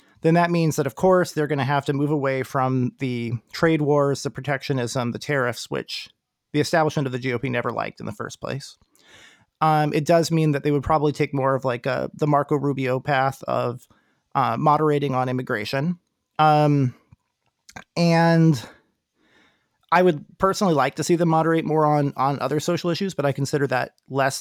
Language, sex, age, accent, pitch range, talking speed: English, male, 30-49, American, 135-160 Hz, 185 wpm